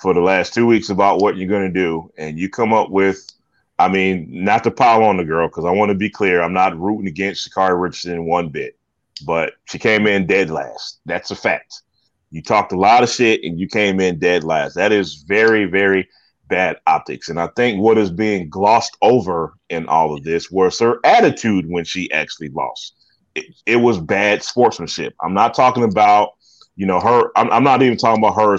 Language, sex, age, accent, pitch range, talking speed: English, male, 30-49, American, 95-110 Hz, 215 wpm